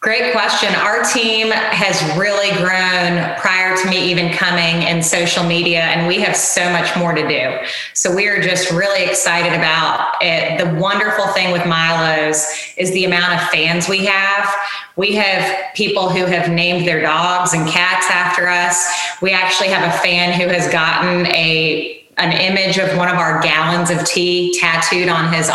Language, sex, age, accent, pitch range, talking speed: English, female, 20-39, American, 170-185 Hz, 175 wpm